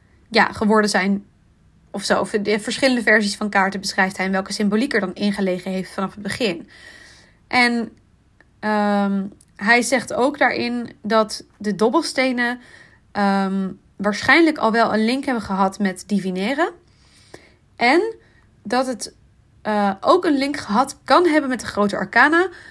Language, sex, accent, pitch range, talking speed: Dutch, female, Dutch, 200-240 Hz, 145 wpm